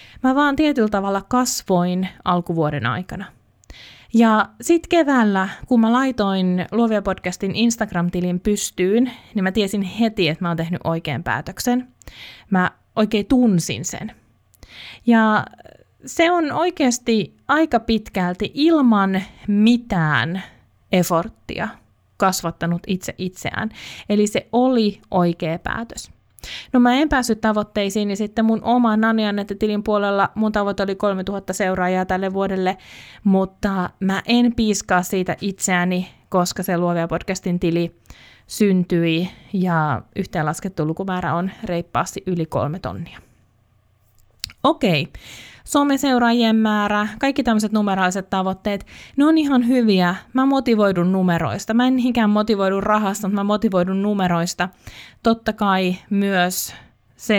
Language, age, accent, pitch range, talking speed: Finnish, 20-39, native, 175-220 Hz, 120 wpm